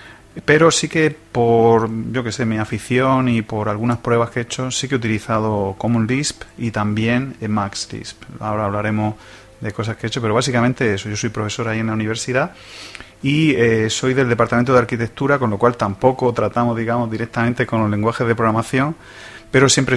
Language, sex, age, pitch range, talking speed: Spanish, male, 30-49, 105-125 Hz, 190 wpm